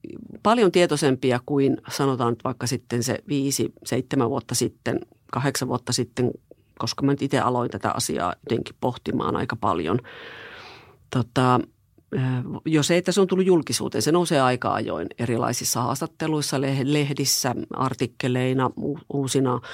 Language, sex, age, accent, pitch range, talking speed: Finnish, female, 40-59, native, 125-150 Hz, 125 wpm